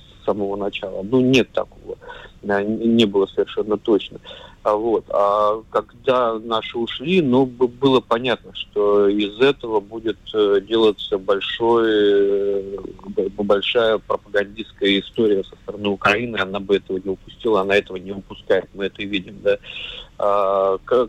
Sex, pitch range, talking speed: male, 100-130 Hz, 130 wpm